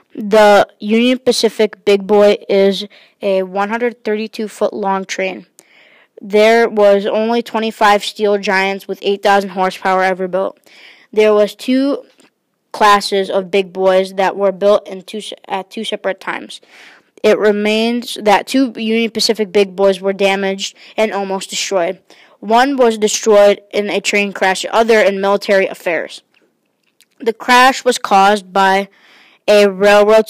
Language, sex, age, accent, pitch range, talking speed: English, female, 20-39, American, 195-215 Hz, 130 wpm